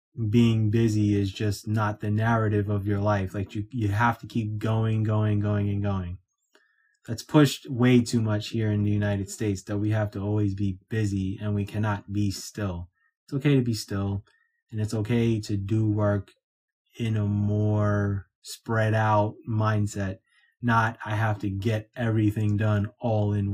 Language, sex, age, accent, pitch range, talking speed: English, male, 20-39, American, 105-115 Hz, 175 wpm